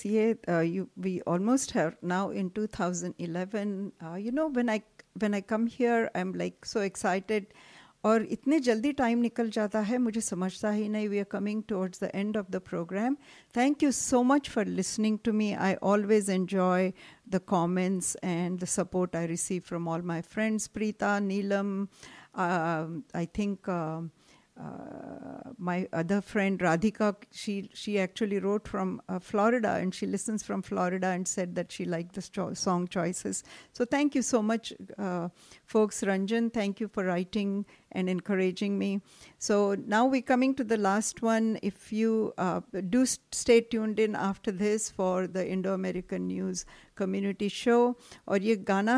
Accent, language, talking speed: Indian, English, 160 wpm